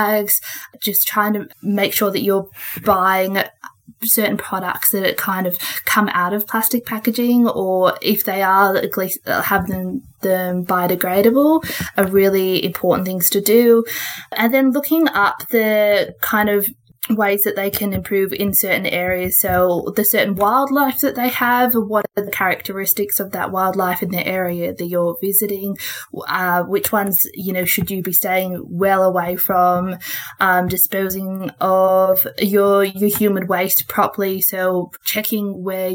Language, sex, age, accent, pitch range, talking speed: English, female, 20-39, Australian, 180-205 Hz, 155 wpm